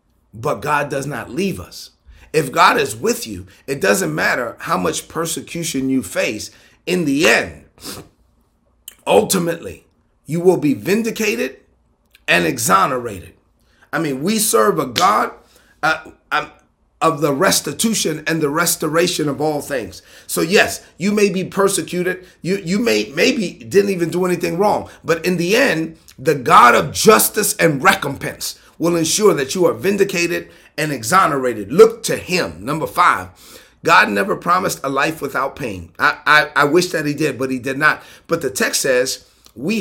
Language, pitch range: English, 140-185 Hz